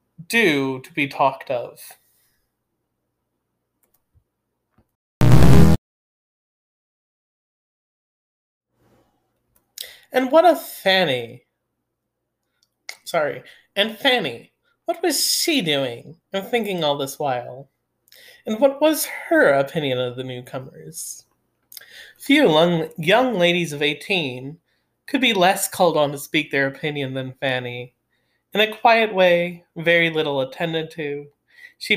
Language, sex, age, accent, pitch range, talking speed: English, male, 30-49, American, 140-200 Hz, 100 wpm